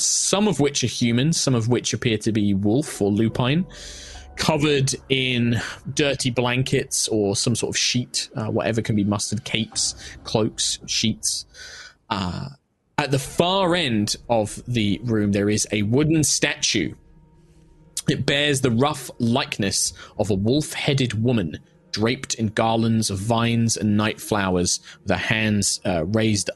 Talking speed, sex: 145 wpm, male